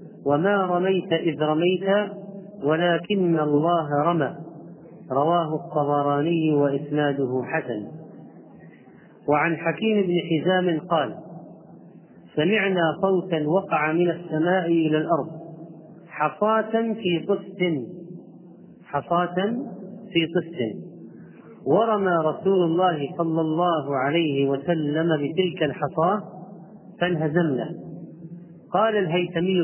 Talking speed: 85 wpm